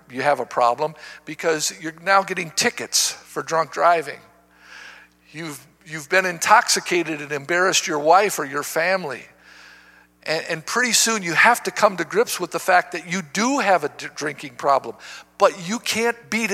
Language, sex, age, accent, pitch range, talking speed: English, male, 50-69, American, 155-245 Hz, 170 wpm